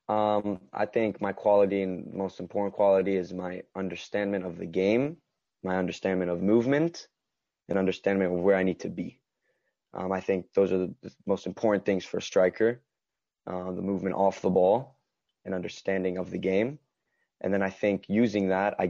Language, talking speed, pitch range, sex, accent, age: English, 180 wpm, 90-100 Hz, male, American, 20-39